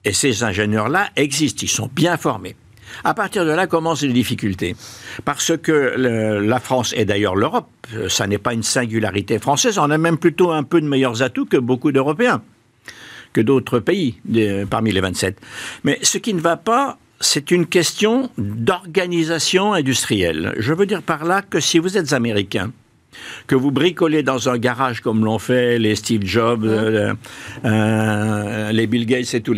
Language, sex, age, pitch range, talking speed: French, male, 60-79, 110-155 Hz, 180 wpm